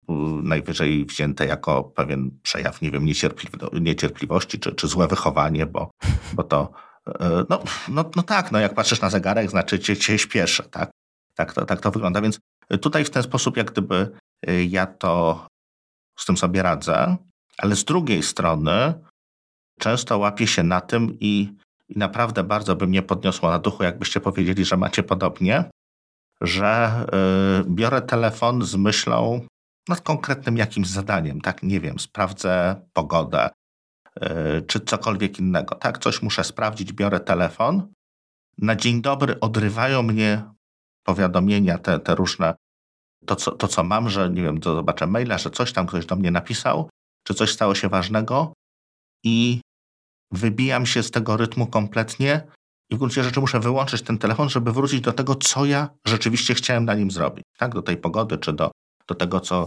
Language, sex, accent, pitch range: Polish, male, native, 90-120 Hz